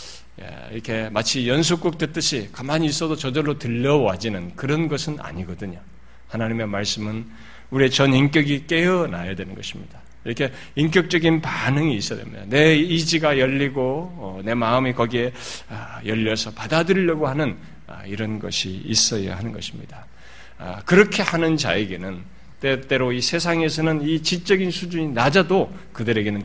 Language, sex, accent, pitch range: Korean, male, native, 105-160 Hz